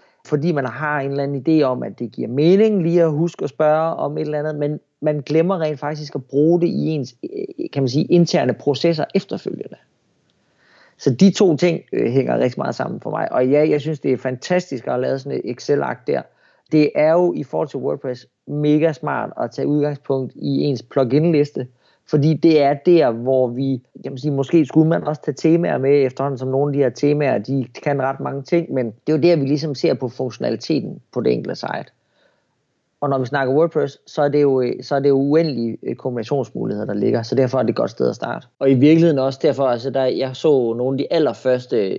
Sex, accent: male, native